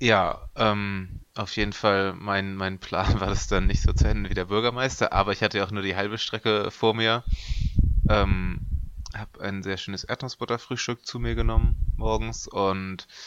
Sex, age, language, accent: male, 20-39, German, German